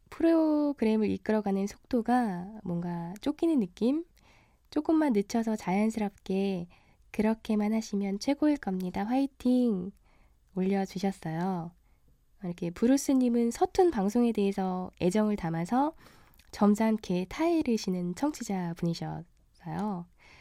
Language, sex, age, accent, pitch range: Korean, female, 20-39, native, 180-235 Hz